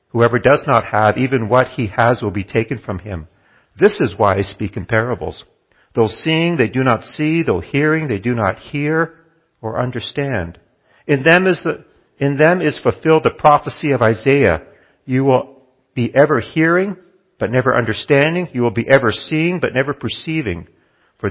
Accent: American